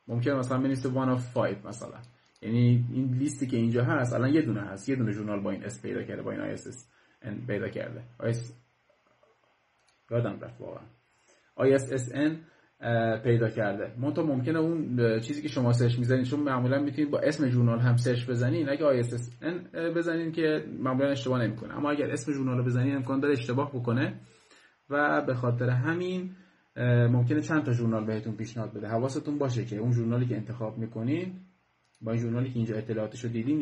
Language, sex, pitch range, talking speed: Persian, male, 115-140 Hz, 180 wpm